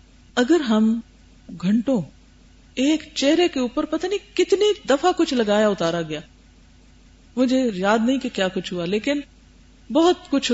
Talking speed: 140 wpm